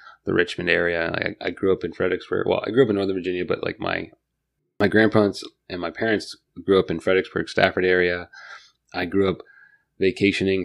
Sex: male